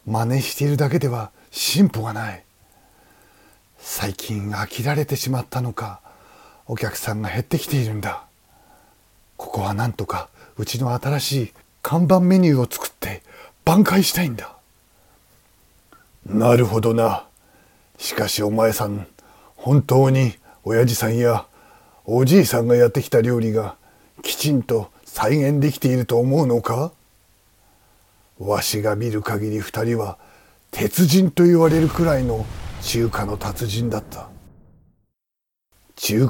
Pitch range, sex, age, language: 105-135 Hz, male, 40-59, Japanese